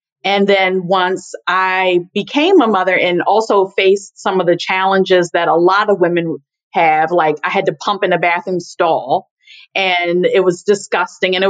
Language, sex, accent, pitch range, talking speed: English, female, American, 175-215 Hz, 185 wpm